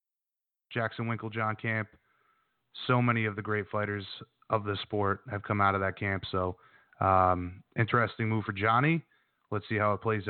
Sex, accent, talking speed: male, American, 175 wpm